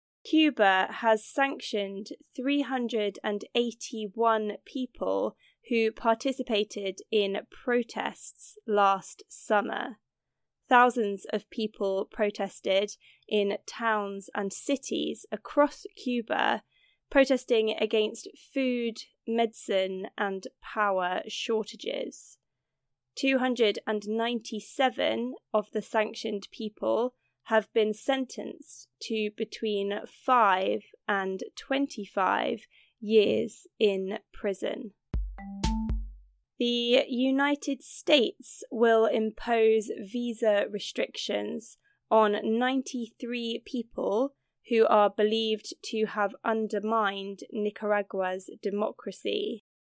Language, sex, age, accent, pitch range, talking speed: English, female, 20-39, British, 205-245 Hz, 75 wpm